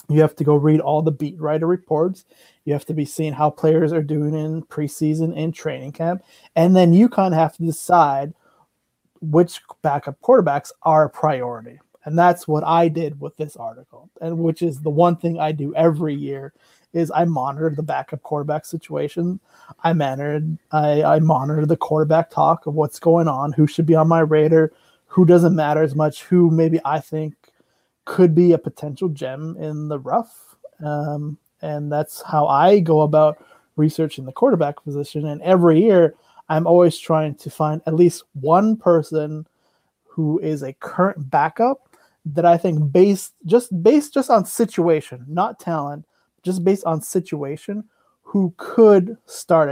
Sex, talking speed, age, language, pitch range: male, 175 wpm, 20-39, English, 150-170 Hz